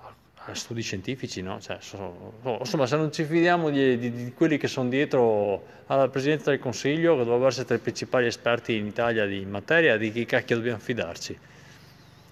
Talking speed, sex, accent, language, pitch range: 190 wpm, male, native, Italian, 105-135 Hz